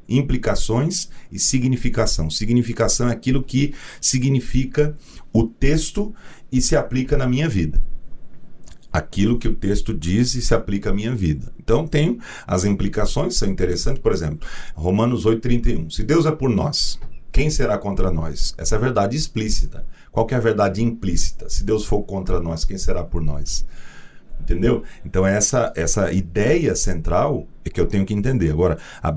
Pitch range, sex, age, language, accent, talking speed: 90-130 Hz, male, 40-59, Portuguese, Brazilian, 165 wpm